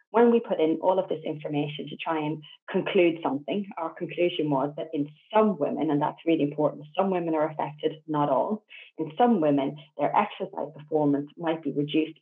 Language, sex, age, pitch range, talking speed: English, female, 30-49, 150-180 Hz, 190 wpm